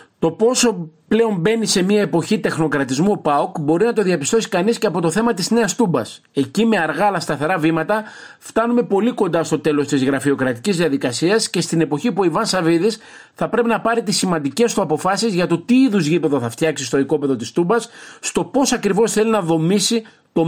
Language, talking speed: Greek, 195 wpm